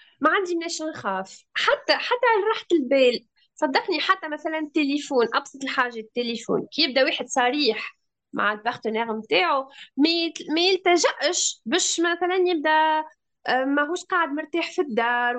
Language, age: Arabic, 20-39